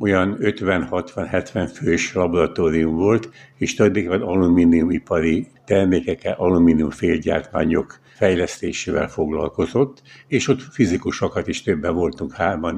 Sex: male